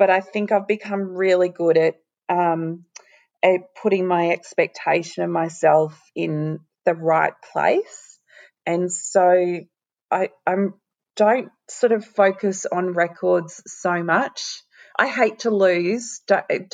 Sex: female